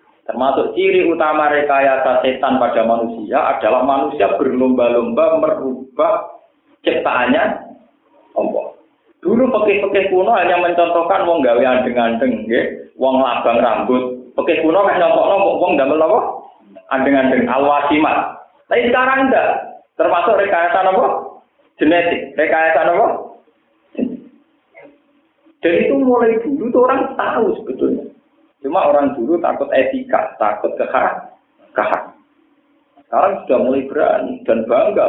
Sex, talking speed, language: male, 105 wpm, Indonesian